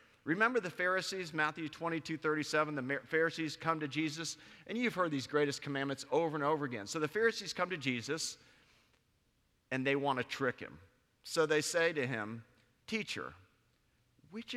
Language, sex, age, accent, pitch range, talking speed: English, male, 40-59, American, 130-170 Hz, 170 wpm